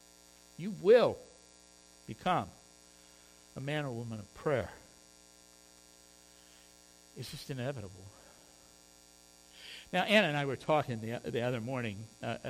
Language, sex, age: English, male, 60-79